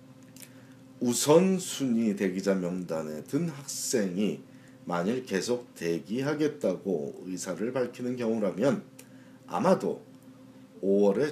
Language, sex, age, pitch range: Korean, male, 40-59, 90-140 Hz